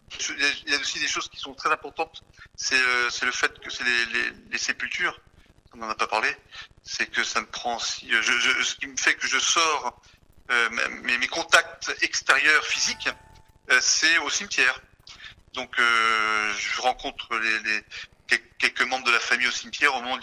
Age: 30-49